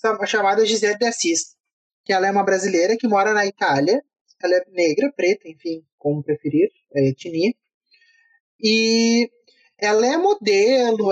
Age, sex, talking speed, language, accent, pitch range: 20-39, male, 135 wpm, Portuguese, Brazilian, 190-260 Hz